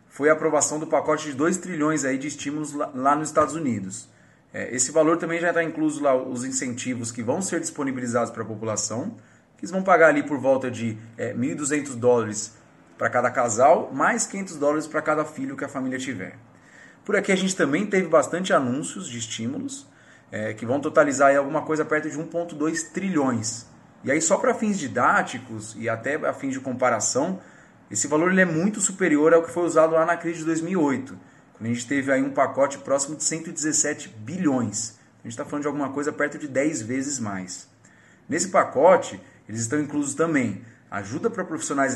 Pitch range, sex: 125-165 Hz, male